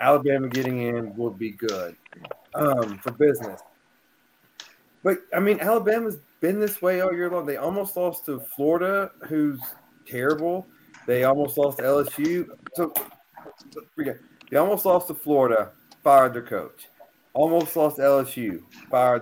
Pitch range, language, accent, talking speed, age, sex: 120-155 Hz, English, American, 135 wpm, 30-49, male